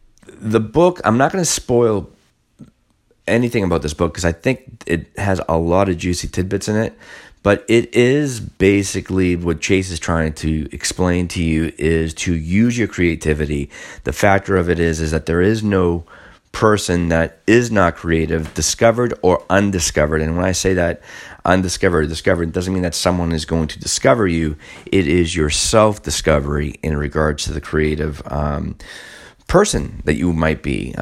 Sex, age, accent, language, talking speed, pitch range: male, 30-49, American, English, 175 wpm, 80-95 Hz